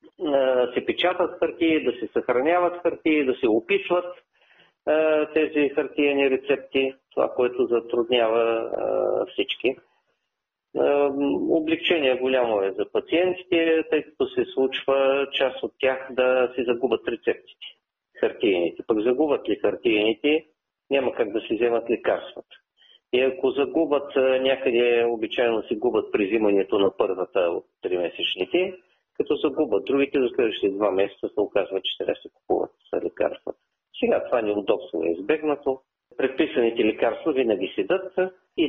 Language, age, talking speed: Bulgarian, 40-59, 130 wpm